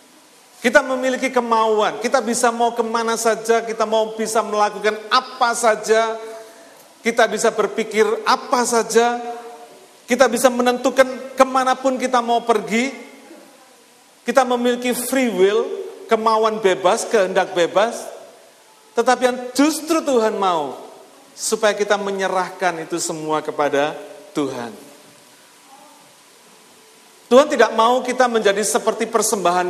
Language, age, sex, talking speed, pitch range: Malay, 40-59, male, 105 wpm, 170-245 Hz